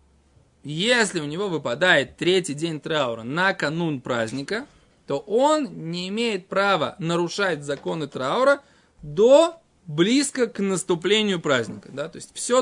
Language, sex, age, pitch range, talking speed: Russian, male, 20-39, 145-205 Hz, 130 wpm